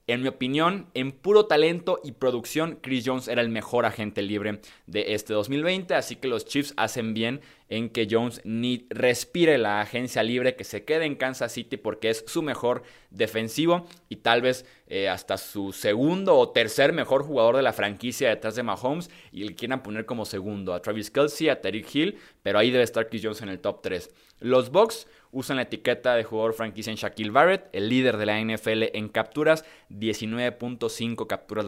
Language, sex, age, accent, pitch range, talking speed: Spanish, male, 20-39, Mexican, 110-135 Hz, 195 wpm